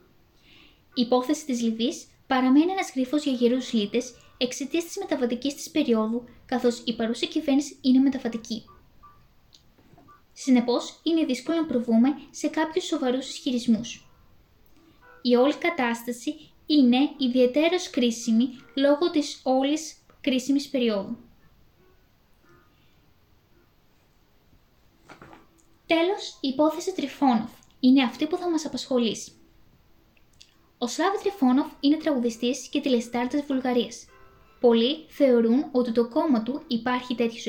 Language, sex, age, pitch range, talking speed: Greek, female, 20-39, 245-300 Hz, 105 wpm